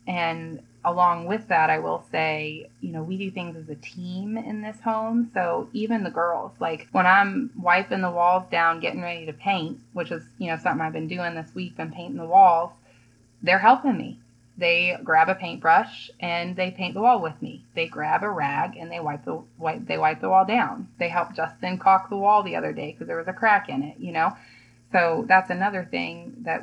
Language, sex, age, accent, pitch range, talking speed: English, female, 20-39, American, 160-220 Hz, 220 wpm